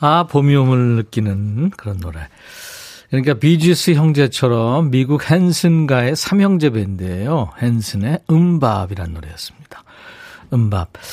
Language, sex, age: Korean, male, 50-69